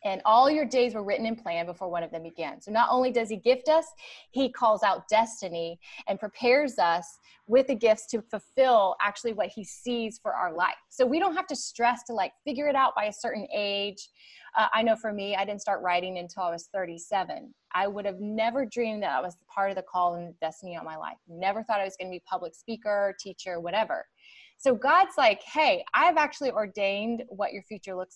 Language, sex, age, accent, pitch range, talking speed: English, female, 20-39, American, 195-245 Hz, 225 wpm